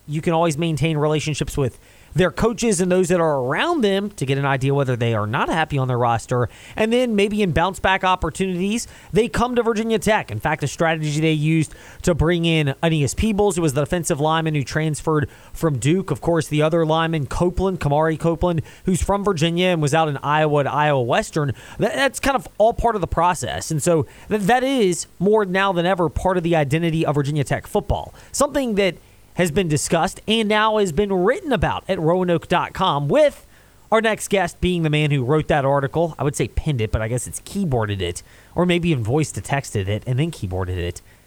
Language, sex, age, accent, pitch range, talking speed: English, male, 20-39, American, 145-205 Hz, 210 wpm